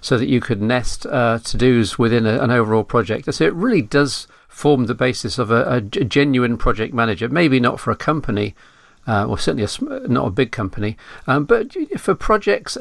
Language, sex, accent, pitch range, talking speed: English, male, British, 120-145 Hz, 185 wpm